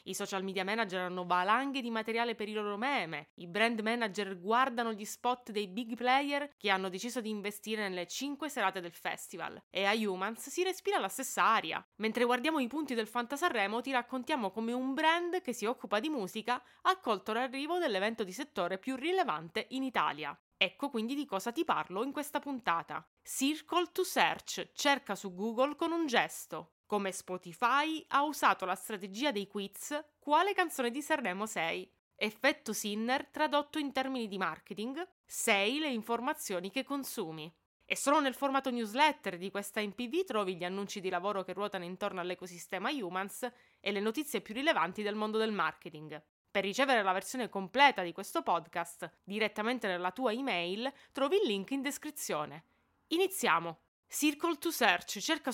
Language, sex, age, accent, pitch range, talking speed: Italian, female, 20-39, native, 195-285 Hz, 170 wpm